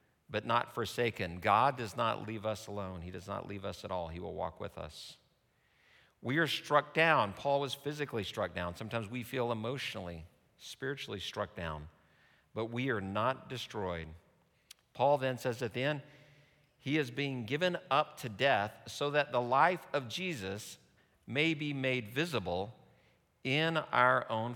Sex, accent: male, American